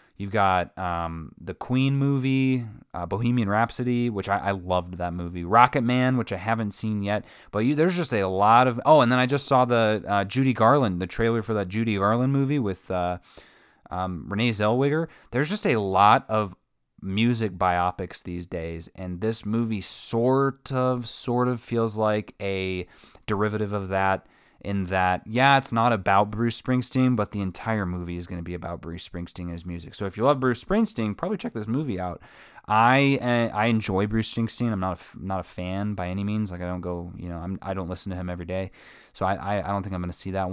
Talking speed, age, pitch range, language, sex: 215 wpm, 20-39, 95-120 Hz, English, male